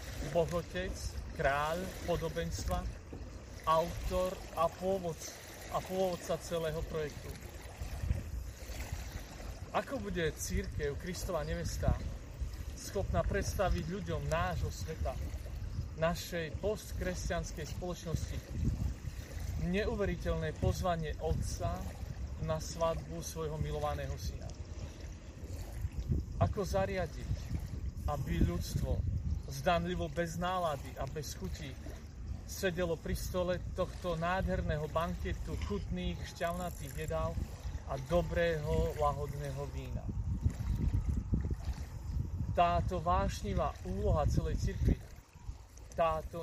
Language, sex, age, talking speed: Slovak, male, 40-59, 80 wpm